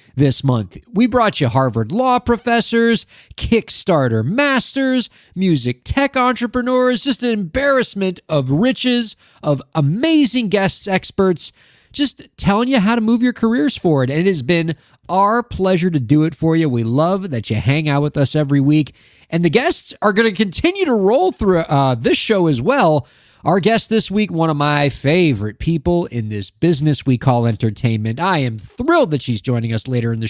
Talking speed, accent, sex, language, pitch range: 180 wpm, American, male, English, 130-210 Hz